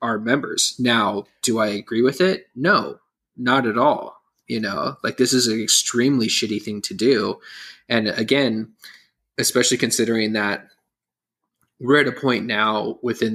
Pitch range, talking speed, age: 110-135 Hz, 155 wpm, 20-39